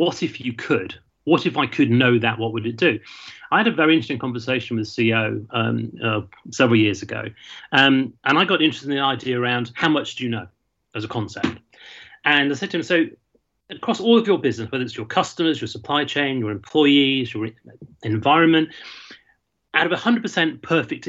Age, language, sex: 30-49, English, male